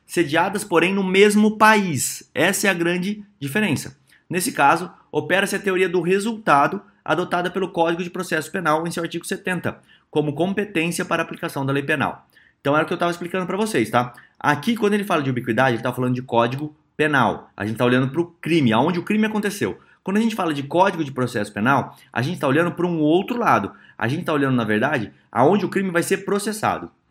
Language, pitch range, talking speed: Portuguese, 145-190 Hz, 210 wpm